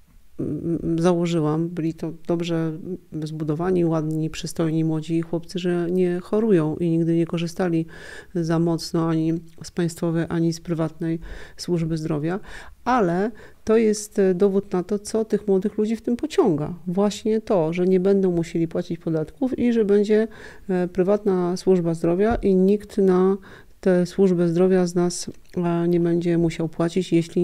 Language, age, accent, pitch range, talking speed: Polish, 40-59, native, 165-190 Hz, 145 wpm